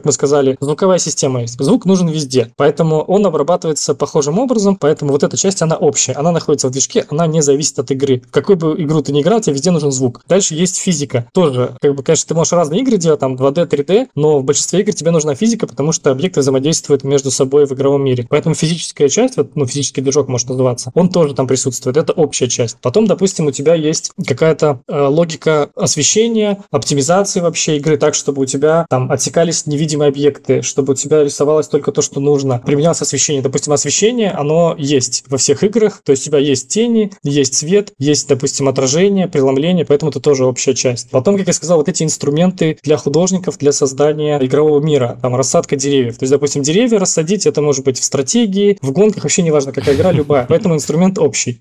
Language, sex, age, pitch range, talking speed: Russian, male, 20-39, 140-170 Hz, 205 wpm